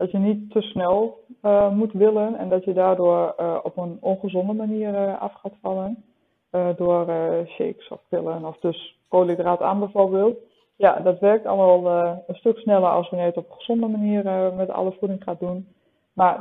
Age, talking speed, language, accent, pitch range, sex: 20-39, 200 wpm, Dutch, Dutch, 180-210 Hz, female